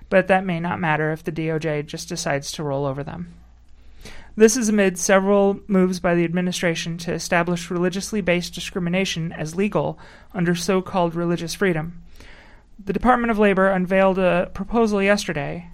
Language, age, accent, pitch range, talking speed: English, 30-49, American, 170-200 Hz, 155 wpm